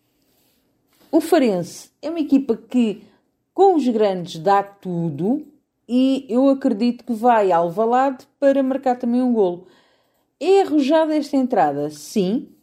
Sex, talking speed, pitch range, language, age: female, 130 wpm, 185-265 Hz, Portuguese, 40-59